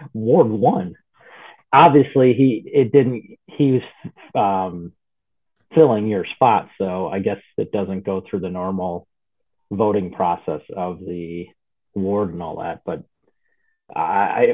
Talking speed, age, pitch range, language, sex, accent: 130 wpm, 30-49, 95-130 Hz, English, male, American